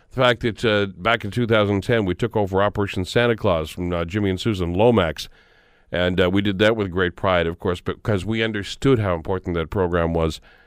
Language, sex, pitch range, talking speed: English, male, 90-115 Hz, 210 wpm